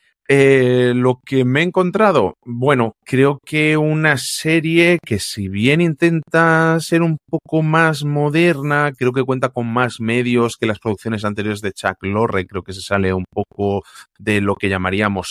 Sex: male